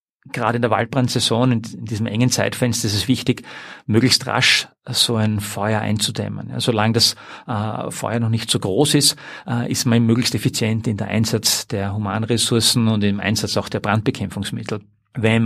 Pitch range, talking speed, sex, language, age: 110-125 Hz, 160 wpm, male, English, 40-59